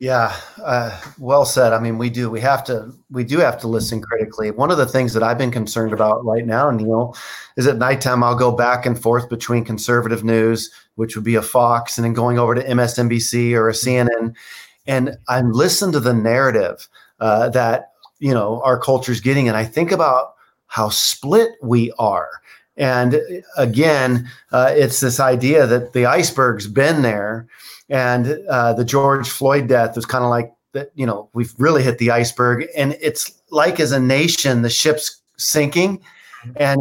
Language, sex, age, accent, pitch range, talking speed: English, male, 40-59, American, 120-150 Hz, 185 wpm